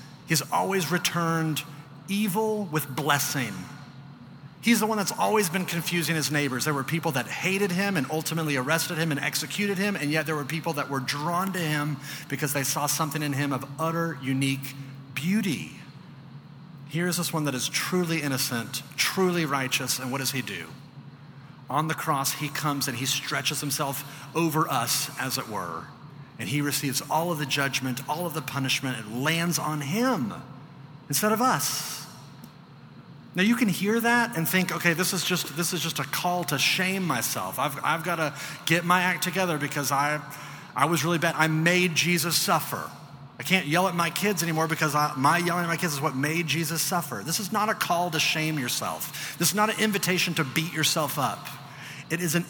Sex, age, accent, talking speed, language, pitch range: male, 40-59, American, 195 wpm, English, 140-175 Hz